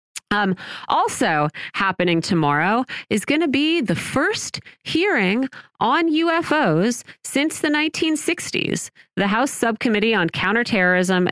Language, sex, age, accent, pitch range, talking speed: English, female, 30-49, American, 170-230 Hz, 110 wpm